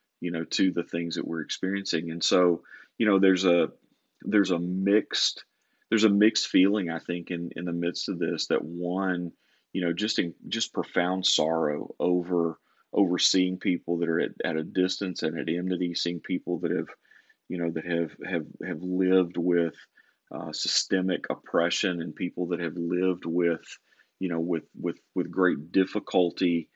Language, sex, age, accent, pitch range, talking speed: English, male, 30-49, American, 85-95 Hz, 175 wpm